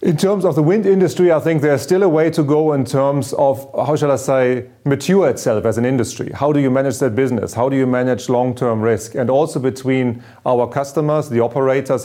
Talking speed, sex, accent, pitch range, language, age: 225 wpm, male, German, 115-140 Hz, English, 40-59